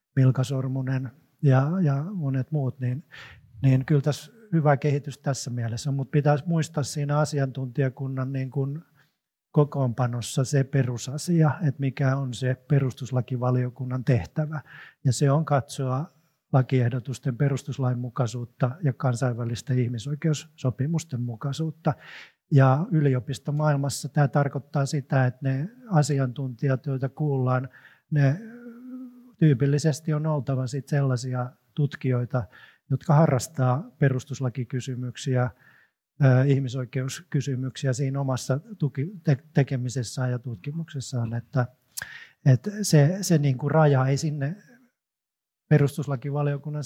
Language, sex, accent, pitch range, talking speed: Finnish, male, native, 130-150 Hz, 95 wpm